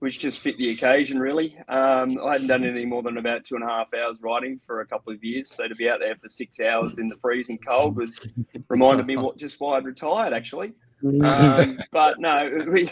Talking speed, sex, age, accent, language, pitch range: 230 wpm, male, 20-39, Australian, English, 110-125 Hz